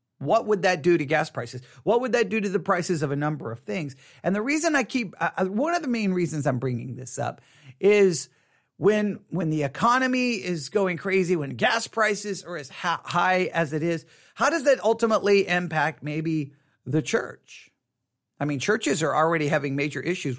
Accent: American